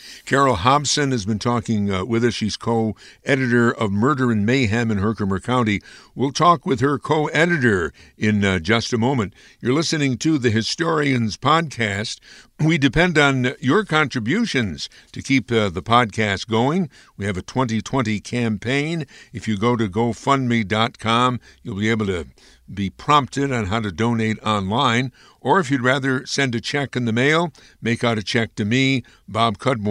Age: 60-79